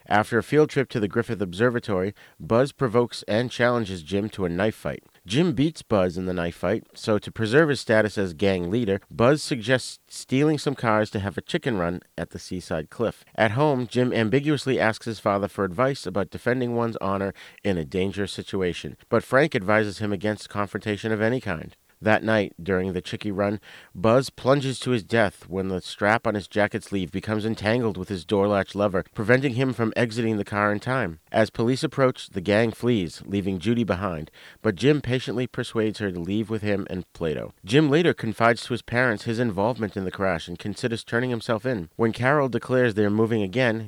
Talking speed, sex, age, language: 200 wpm, male, 50-69, English